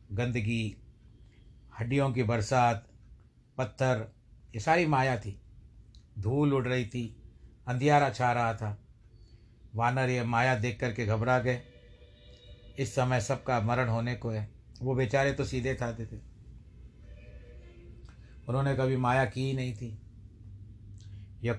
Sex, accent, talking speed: male, native, 130 wpm